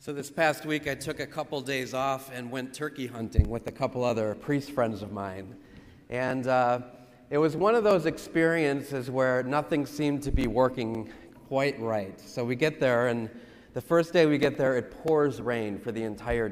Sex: male